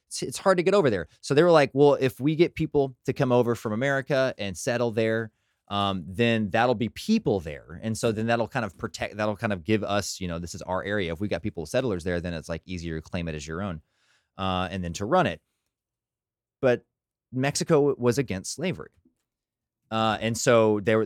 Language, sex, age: English, male, 30-49